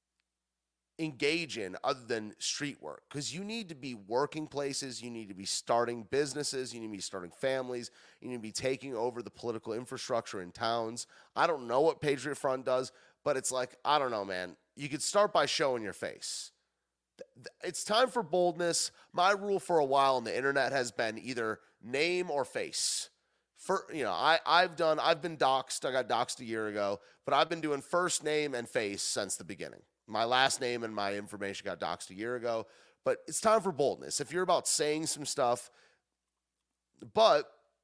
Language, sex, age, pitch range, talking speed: English, male, 30-49, 115-165 Hz, 195 wpm